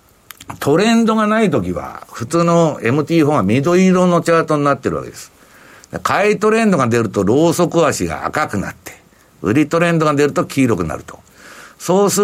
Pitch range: 140-205 Hz